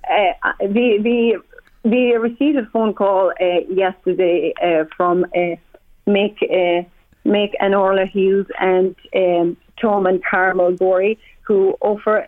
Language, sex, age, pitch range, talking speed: English, female, 30-49, 185-220 Hz, 130 wpm